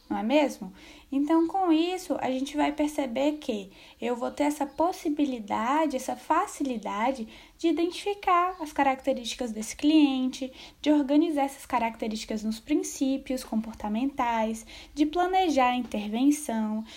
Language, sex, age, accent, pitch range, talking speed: Portuguese, female, 10-29, Brazilian, 240-320 Hz, 125 wpm